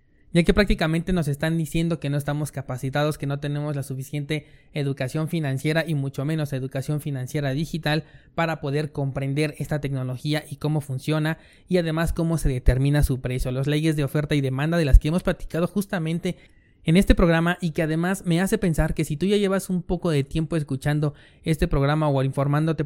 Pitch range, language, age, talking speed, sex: 140-170 Hz, Spanish, 20-39, 190 wpm, male